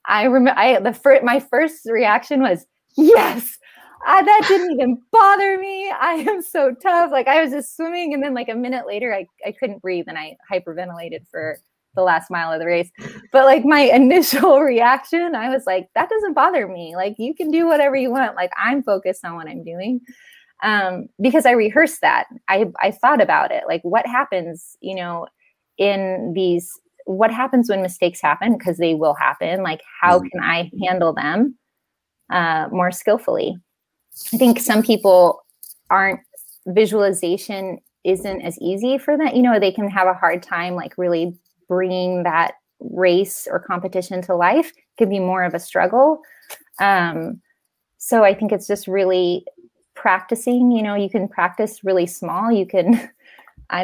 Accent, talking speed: American, 175 wpm